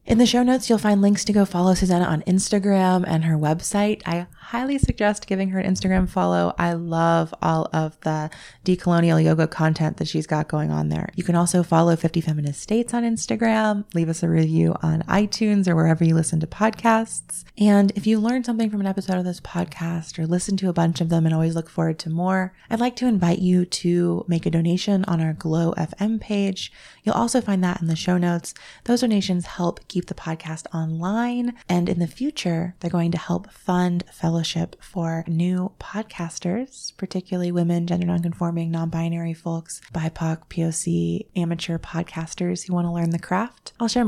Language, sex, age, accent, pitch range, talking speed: English, female, 20-39, American, 165-200 Hz, 195 wpm